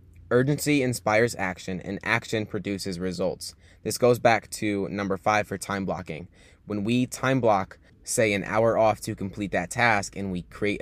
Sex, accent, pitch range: male, American, 95-120 Hz